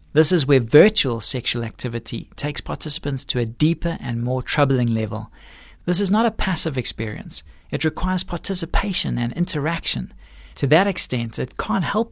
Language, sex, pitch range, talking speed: English, male, 120-170 Hz, 160 wpm